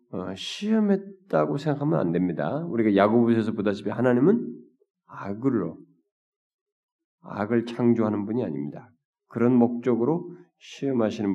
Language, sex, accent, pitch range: Korean, male, native, 115-180 Hz